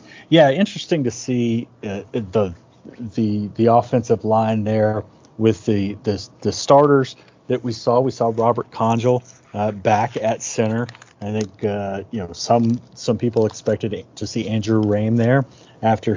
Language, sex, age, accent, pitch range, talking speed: English, male, 30-49, American, 110-125 Hz, 155 wpm